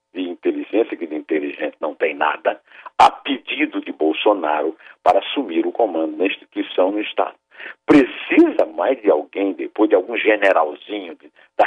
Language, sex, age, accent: Portuguese, male, 60-79, Brazilian